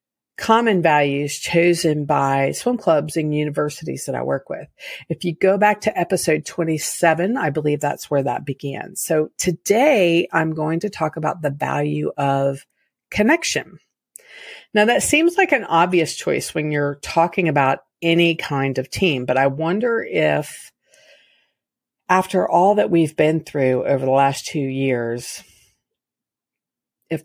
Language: English